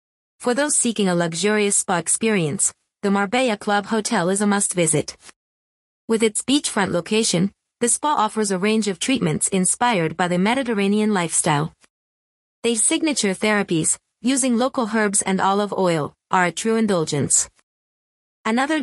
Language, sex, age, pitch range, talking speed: English, female, 30-49, 180-225 Hz, 140 wpm